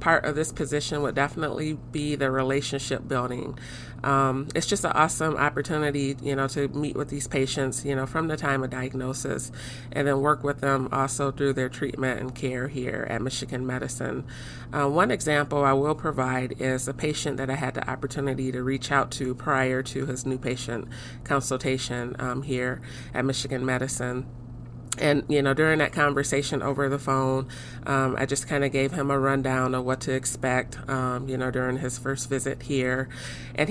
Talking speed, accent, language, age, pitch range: 185 wpm, American, English, 30-49, 130-140 Hz